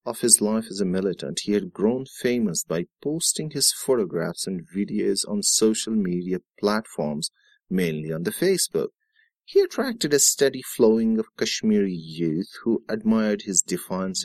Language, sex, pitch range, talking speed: English, male, 90-135 Hz, 150 wpm